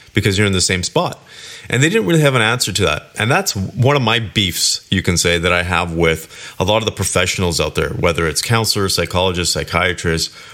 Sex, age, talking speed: male, 30-49, 230 wpm